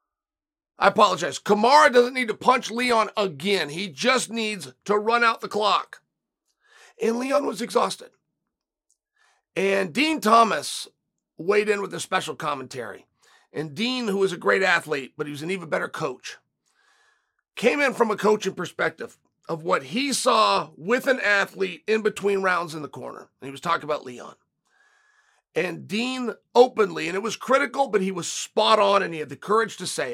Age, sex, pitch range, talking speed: 40-59, male, 180-245 Hz, 175 wpm